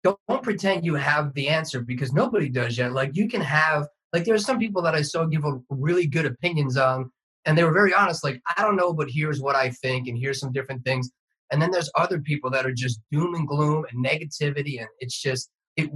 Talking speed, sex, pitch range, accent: 240 wpm, male, 130-160 Hz, American